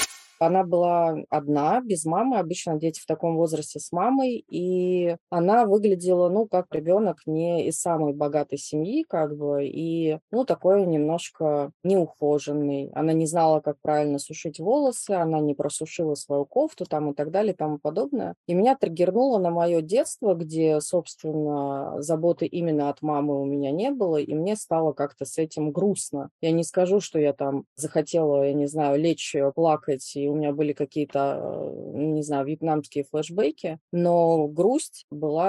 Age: 20-39